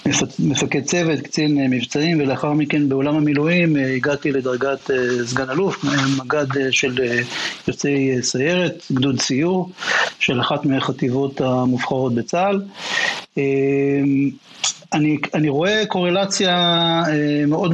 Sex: male